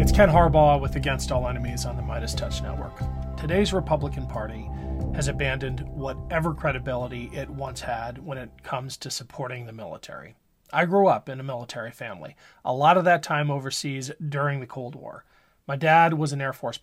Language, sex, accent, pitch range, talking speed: English, male, American, 130-160 Hz, 185 wpm